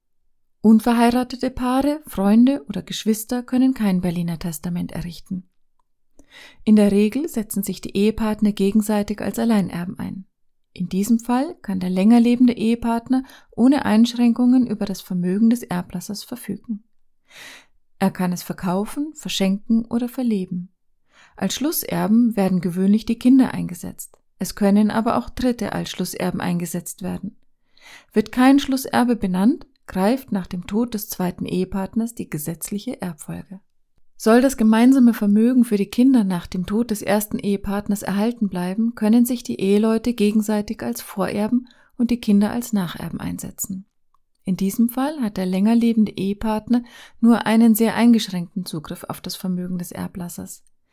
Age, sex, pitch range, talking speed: 30-49, female, 190-235 Hz, 140 wpm